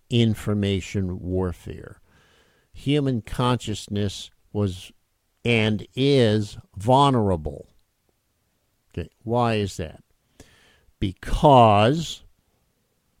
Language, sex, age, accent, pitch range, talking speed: English, male, 50-69, American, 100-125 Hz, 55 wpm